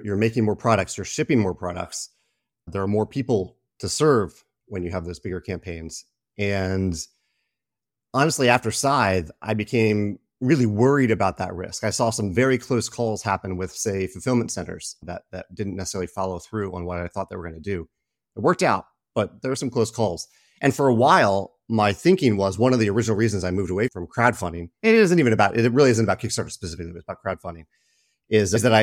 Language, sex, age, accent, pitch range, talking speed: English, male, 30-49, American, 90-120 Hz, 205 wpm